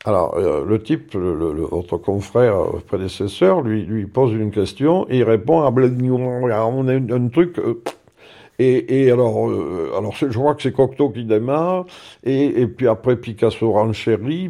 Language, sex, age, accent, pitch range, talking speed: French, male, 50-69, French, 105-140 Hz, 180 wpm